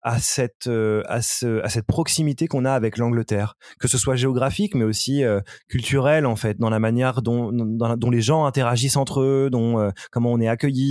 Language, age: French, 20-39